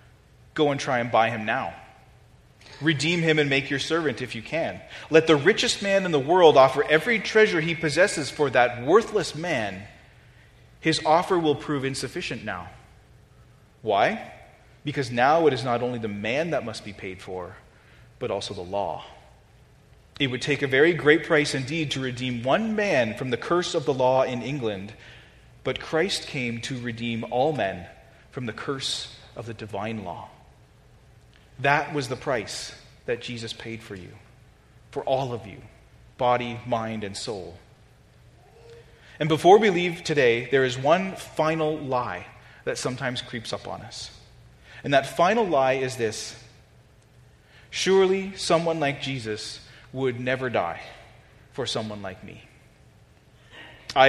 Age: 30-49